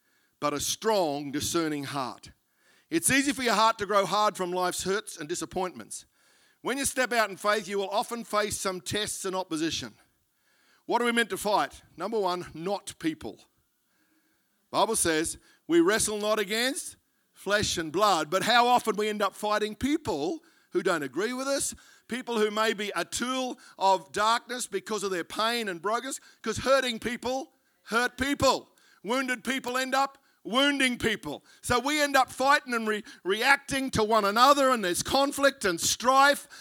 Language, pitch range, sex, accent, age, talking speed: English, 195-255 Hz, male, Australian, 50-69, 170 wpm